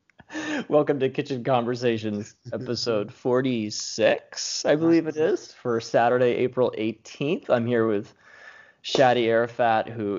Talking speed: 120 wpm